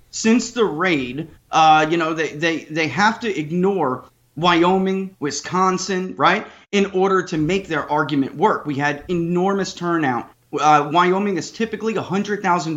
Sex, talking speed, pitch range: male, 145 wpm, 150-190 Hz